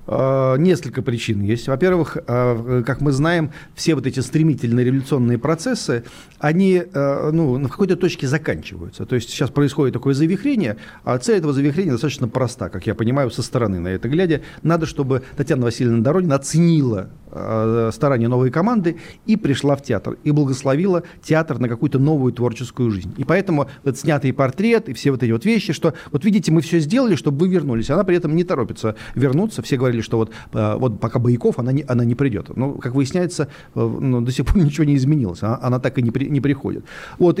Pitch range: 120-165 Hz